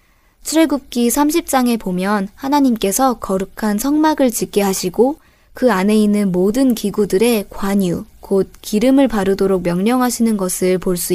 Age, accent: 20-39, native